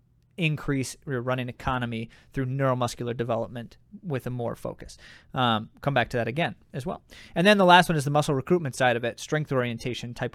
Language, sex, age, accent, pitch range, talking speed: English, male, 20-39, American, 130-160 Hz, 195 wpm